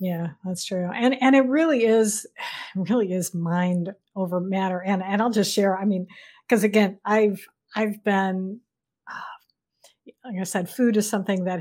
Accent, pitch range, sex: American, 195-245 Hz, female